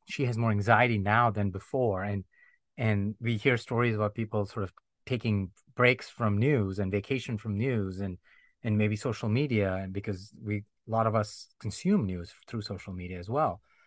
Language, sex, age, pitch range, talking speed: English, male, 30-49, 100-120 Hz, 185 wpm